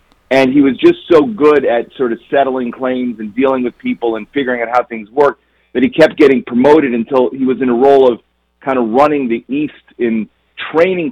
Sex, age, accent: male, 40-59, American